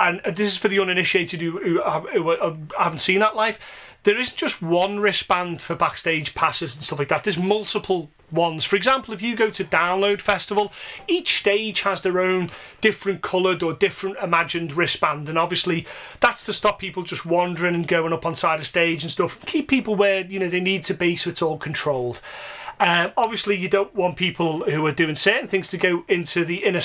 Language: English